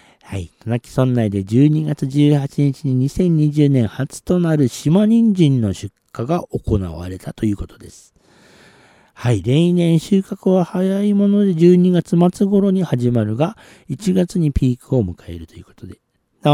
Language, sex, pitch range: Japanese, male, 95-145 Hz